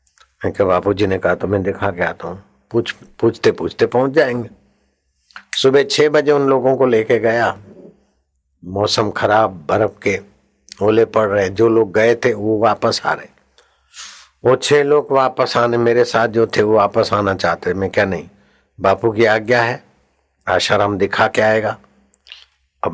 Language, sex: Hindi, male